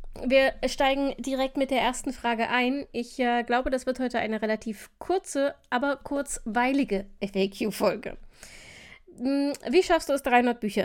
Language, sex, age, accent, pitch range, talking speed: German, female, 20-39, German, 200-250 Hz, 145 wpm